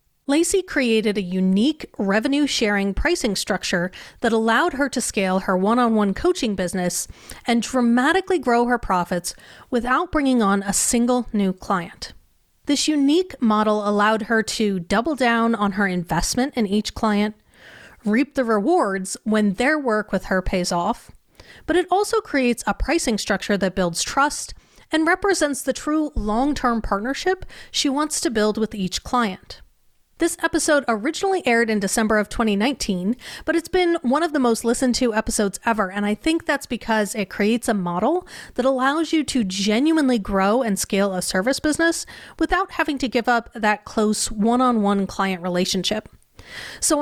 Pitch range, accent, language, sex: 210-285 Hz, American, English, female